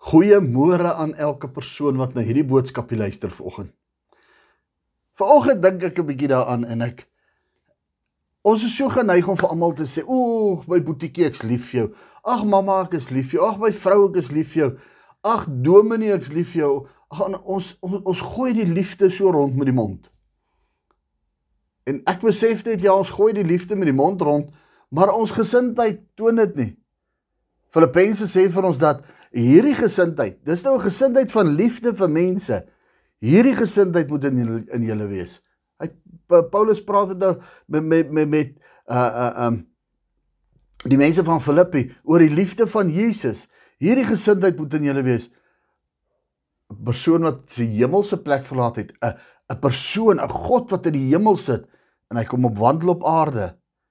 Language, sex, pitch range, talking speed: English, male, 130-195 Hz, 175 wpm